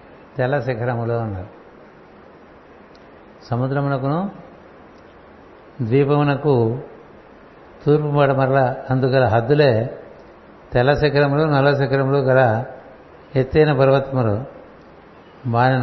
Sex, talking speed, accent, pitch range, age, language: male, 55 wpm, native, 125-145 Hz, 60-79, Telugu